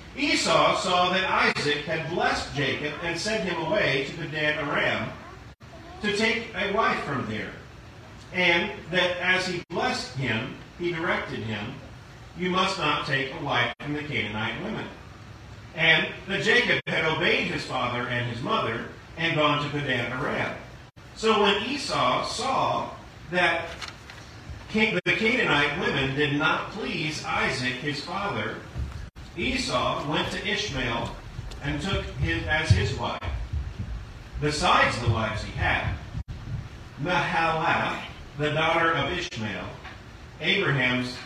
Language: English